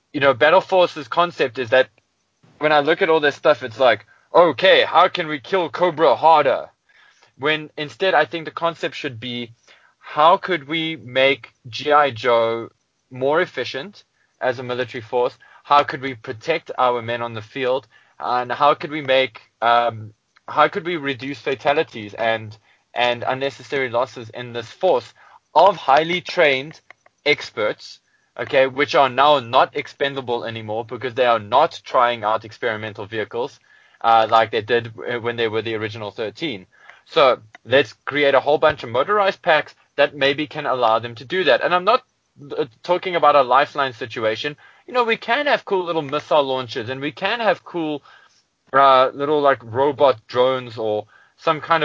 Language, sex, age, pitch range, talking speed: English, male, 20-39, 120-150 Hz, 170 wpm